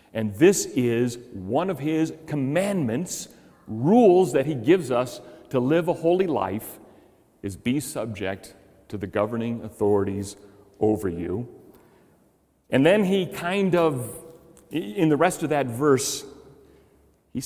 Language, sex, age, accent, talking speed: English, male, 40-59, American, 130 wpm